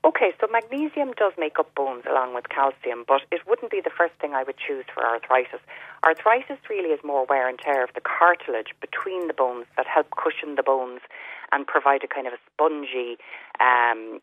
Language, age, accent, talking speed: English, 30-49, Irish, 200 wpm